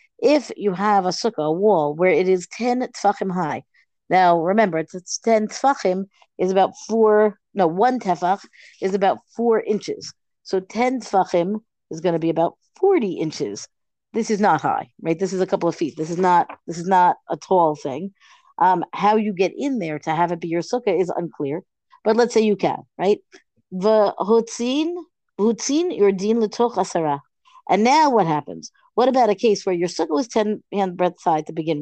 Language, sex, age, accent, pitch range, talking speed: English, female, 40-59, American, 180-235 Hz, 185 wpm